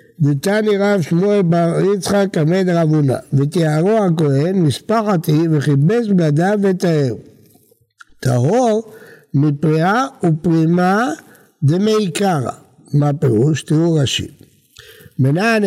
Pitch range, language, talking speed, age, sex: 150-205 Hz, Hebrew, 90 wpm, 60-79, male